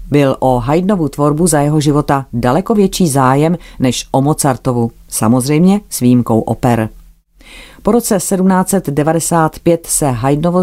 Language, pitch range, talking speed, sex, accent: Czech, 130-165 Hz, 125 wpm, female, native